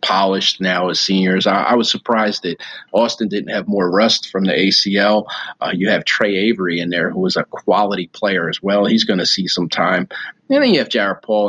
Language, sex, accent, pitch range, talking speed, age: English, male, American, 95-105 Hz, 220 wpm, 30-49